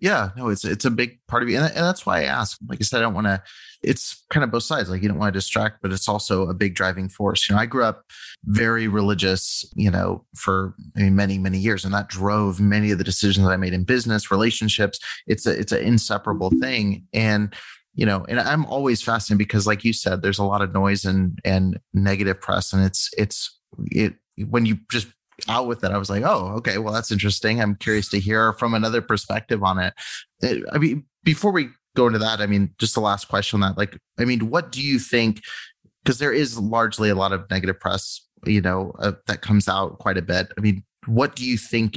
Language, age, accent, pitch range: English, 30-49, American, 95-115 Hz